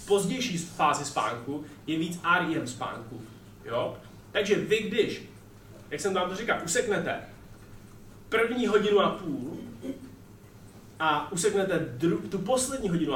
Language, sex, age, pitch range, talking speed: Czech, male, 20-39, 125-190 Hz, 125 wpm